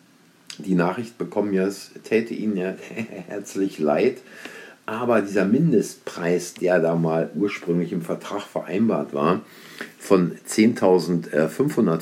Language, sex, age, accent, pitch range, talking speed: German, male, 50-69, German, 80-95 Hz, 115 wpm